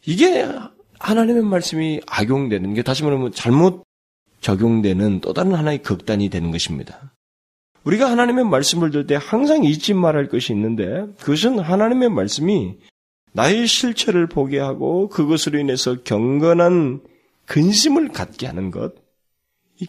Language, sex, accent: Korean, male, native